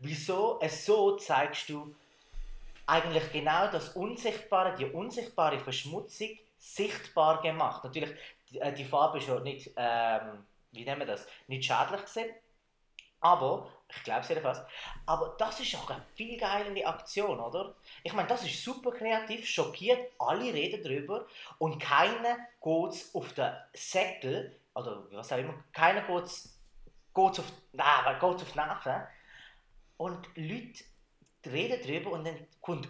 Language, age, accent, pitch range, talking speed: German, 20-39, Austrian, 150-215 Hz, 140 wpm